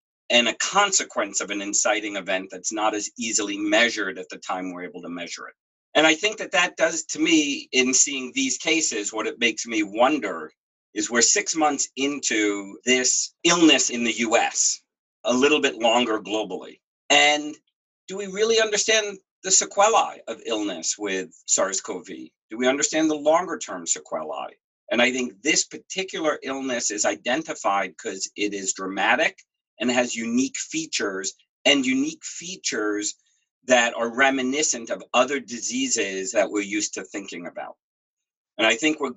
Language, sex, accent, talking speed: English, male, American, 160 wpm